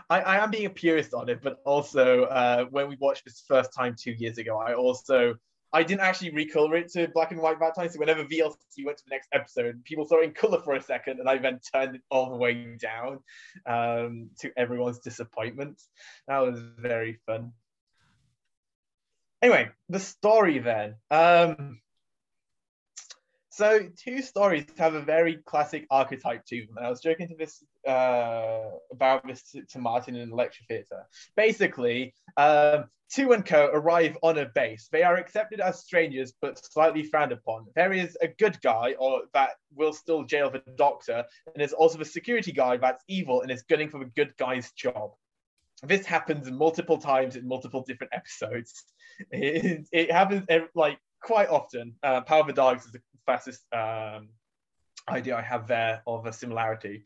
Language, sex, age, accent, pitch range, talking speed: English, male, 20-39, British, 120-165 Hz, 180 wpm